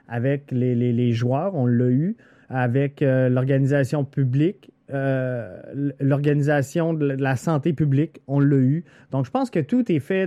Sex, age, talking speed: male, 30-49, 165 wpm